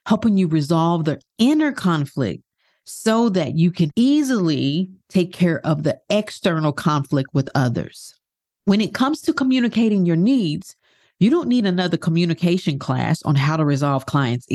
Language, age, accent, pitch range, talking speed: English, 40-59, American, 160-240 Hz, 155 wpm